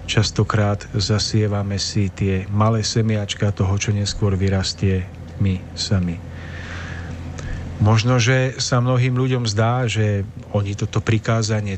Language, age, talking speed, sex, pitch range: Slovak, 40-59, 110 wpm, male, 90-110 Hz